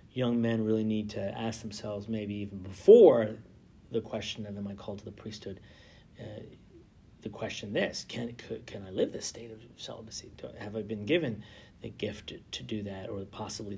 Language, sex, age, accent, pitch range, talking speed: English, male, 40-59, American, 105-125 Hz, 190 wpm